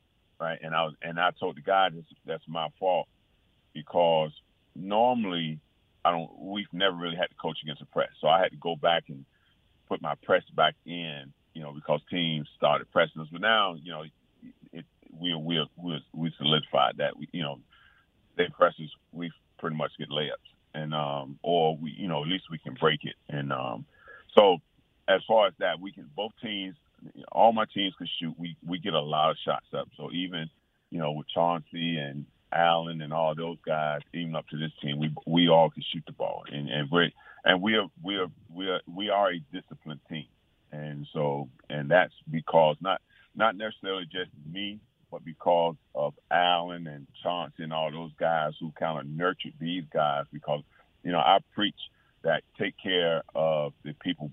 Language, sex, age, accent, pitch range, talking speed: English, male, 40-59, American, 75-85 Hz, 200 wpm